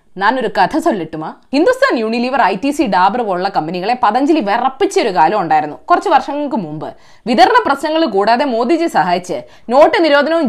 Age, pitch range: 20-39, 230-370 Hz